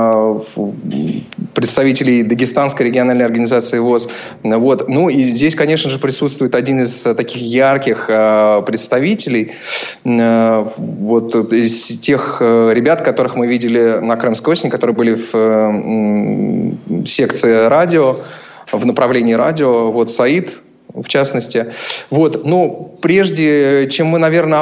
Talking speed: 110 wpm